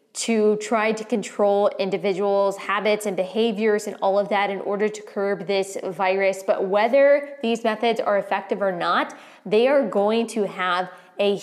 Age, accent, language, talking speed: 20-39, American, English, 170 wpm